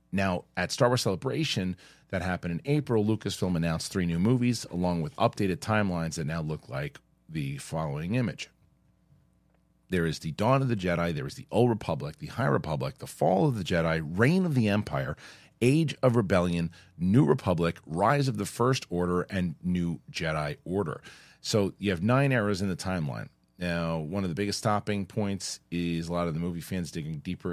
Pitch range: 85-115 Hz